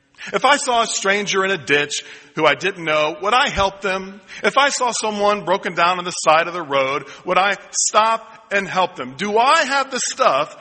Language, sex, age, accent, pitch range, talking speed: English, male, 40-59, American, 170-205 Hz, 220 wpm